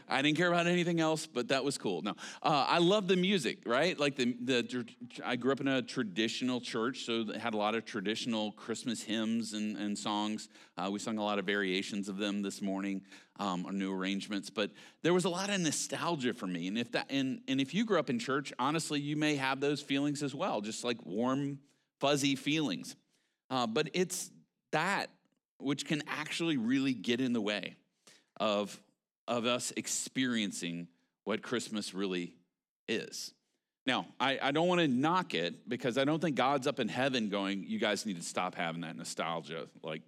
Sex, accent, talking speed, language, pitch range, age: male, American, 200 wpm, English, 105-160 Hz, 40-59